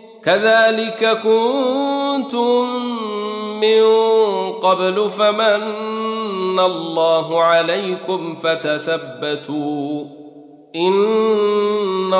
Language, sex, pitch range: Arabic, male, 160-220 Hz